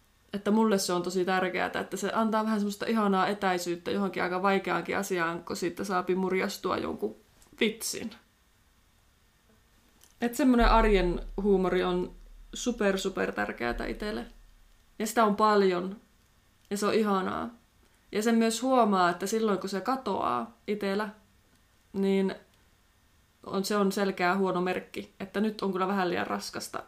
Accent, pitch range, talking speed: native, 175-210 Hz, 140 wpm